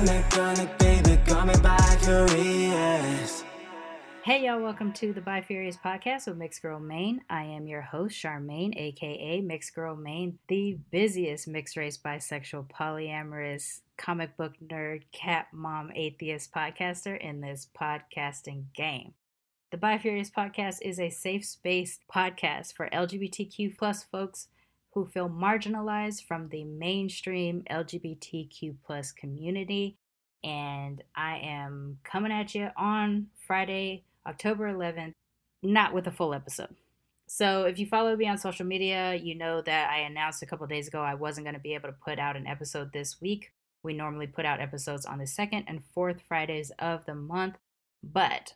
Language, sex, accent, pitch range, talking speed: English, female, American, 150-190 Hz, 145 wpm